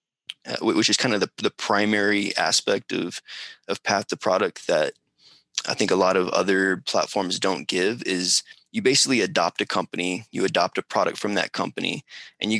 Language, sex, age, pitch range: English, male, 20-39, 100-125 Hz